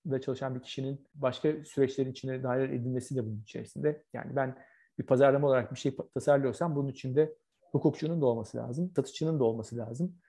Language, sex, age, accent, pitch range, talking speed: Turkish, male, 40-59, native, 125-150 Hz, 175 wpm